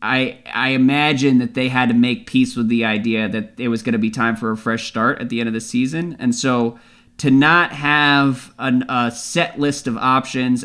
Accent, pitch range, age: American, 120-145 Hz, 20-39